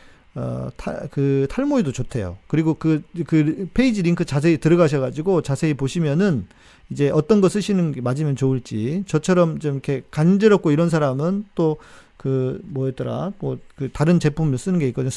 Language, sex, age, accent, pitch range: Korean, male, 40-59, native, 115-185 Hz